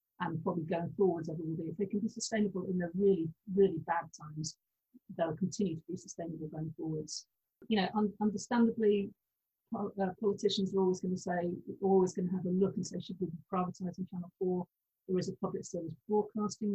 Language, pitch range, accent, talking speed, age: English, 170-200 Hz, British, 195 wpm, 50-69